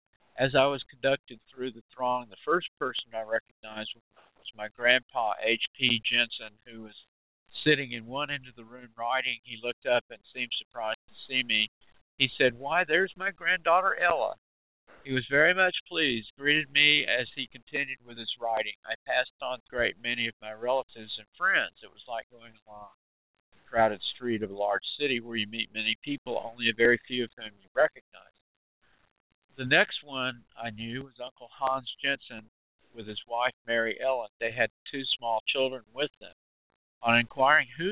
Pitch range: 110-130 Hz